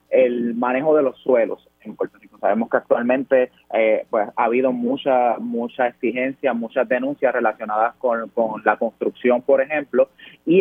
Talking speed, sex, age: 160 wpm, male, 20-39